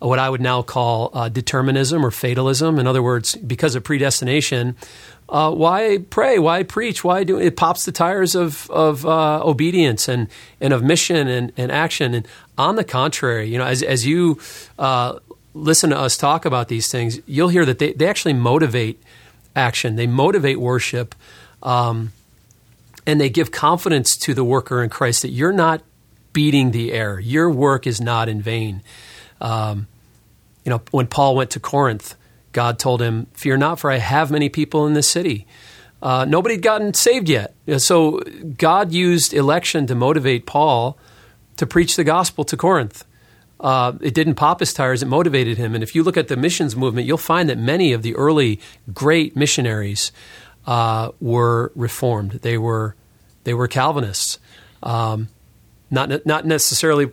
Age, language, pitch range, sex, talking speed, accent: 40-59, English, 120-155 Hz, male, 175 wpm, American